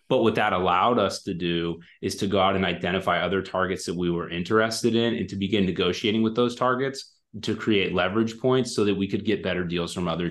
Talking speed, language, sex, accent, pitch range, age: 235 wpm, English, male, American, 85-95 Hz, 30-49